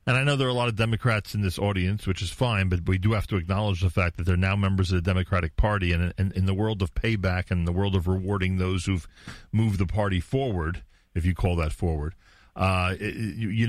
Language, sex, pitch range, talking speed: English, male, 90-110 Hz, 260 wpm